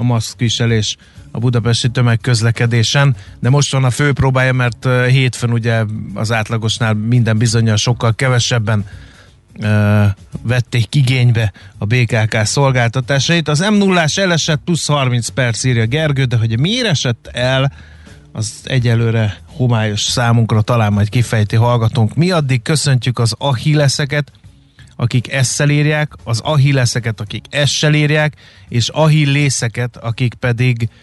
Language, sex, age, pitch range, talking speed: Hungarian, male, 30-49, 110-135 Hz, 125 wpm